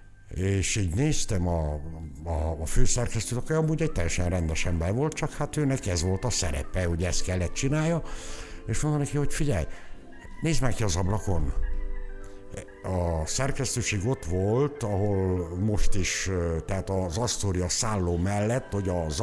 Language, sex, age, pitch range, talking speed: Hungarian, male, 60-79, 85-115 Hz, 150 wpm